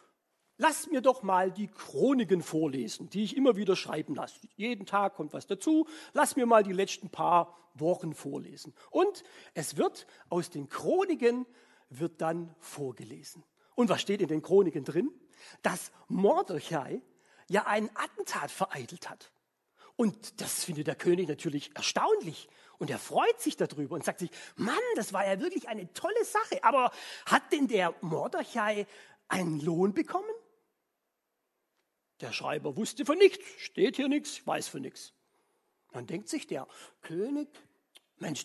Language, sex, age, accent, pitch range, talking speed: German, male, 40-59, German, 180-295 Hz, 155 wpm